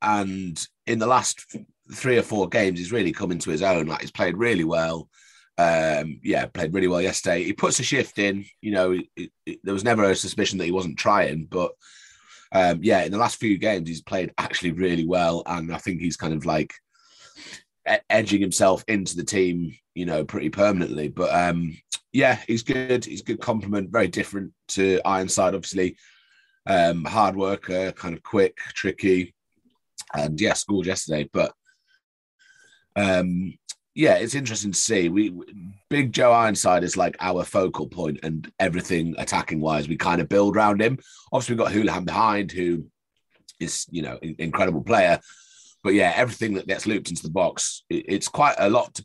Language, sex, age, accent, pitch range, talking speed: English, male, 30-49, British, 85-100 Hz, 180 wpm